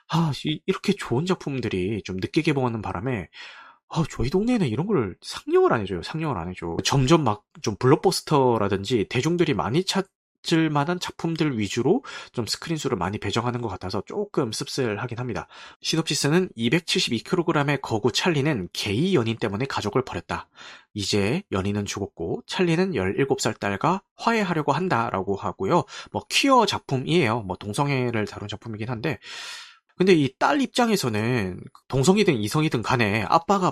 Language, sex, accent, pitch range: Korean, male, native, 110-175 Hz